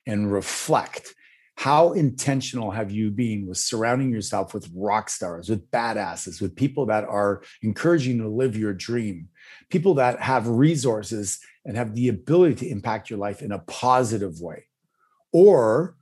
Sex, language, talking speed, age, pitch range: male, English, 155 wpm, 30-49, 105-135 Hz